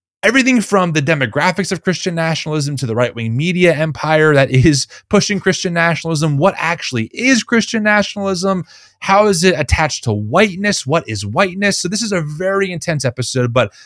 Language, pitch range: English, 150-205 Hz